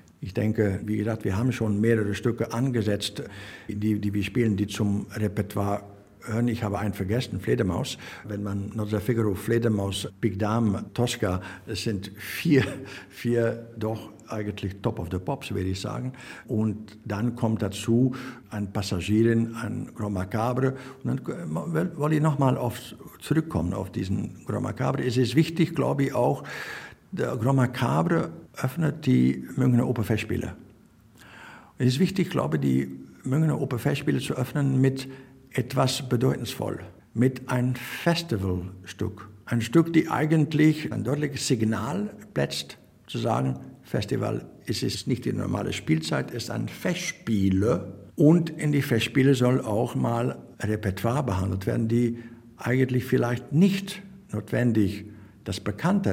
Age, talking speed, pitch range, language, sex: 60-79, 140 wpm, 100-130 Hz, German, male